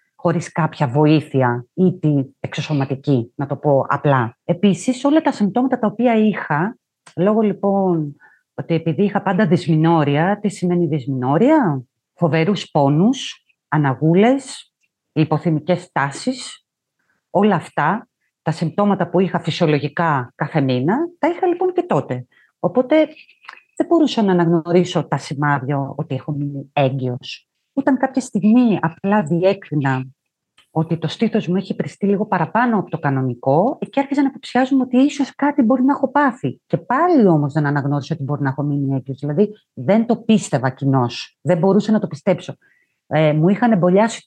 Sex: female